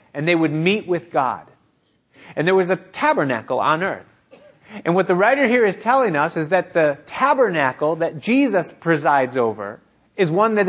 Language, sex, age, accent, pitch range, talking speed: English, male, 30-49, American, 155-205 Hz, 180 wpm